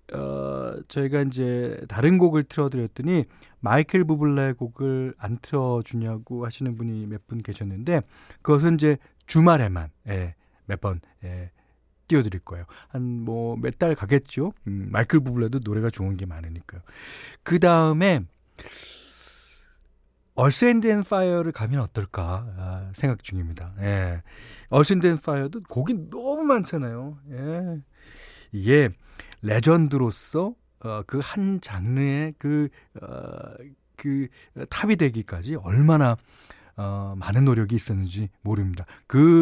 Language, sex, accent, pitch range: Korean, male, native, 100-155 Hz